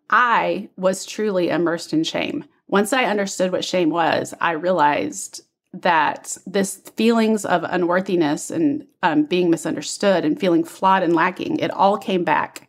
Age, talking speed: 30-49, 150 wpm